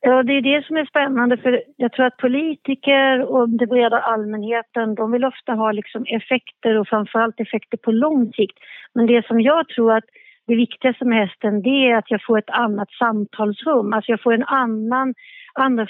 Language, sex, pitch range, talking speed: Swedish, female, 220-260 Hz, 195 wpm